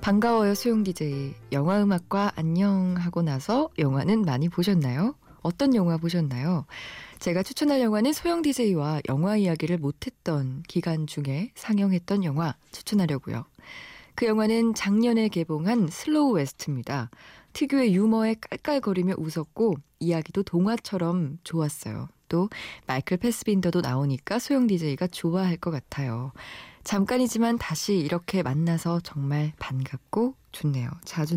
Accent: native